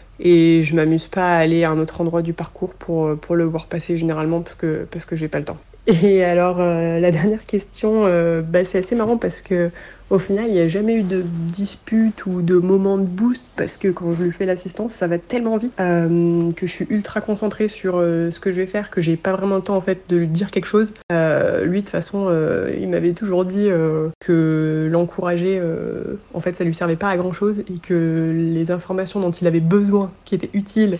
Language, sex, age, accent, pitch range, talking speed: French, female, 30-49, French, 170-195 Hz, 235 wpm